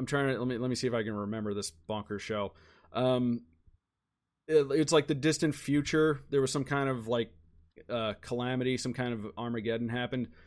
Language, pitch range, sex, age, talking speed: English, 110-140 Hz, male, 30-49, 200 wpm